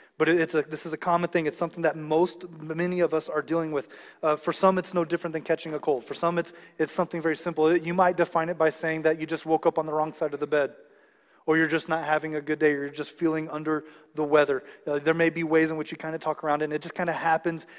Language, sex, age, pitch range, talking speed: English, male, 30-49, 145-160 Hz, 295 wpm